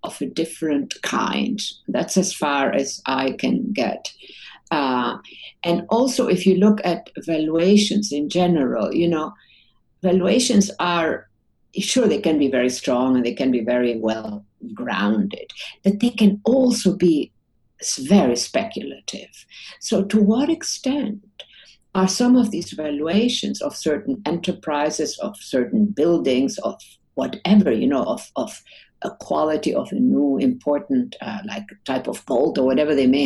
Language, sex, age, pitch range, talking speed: English, female, 60-79, 155-225 Hz, 145 wpm